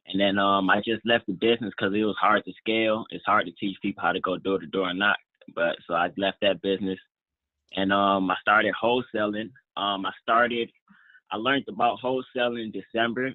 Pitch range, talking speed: 100-115 Hz, 210 wpm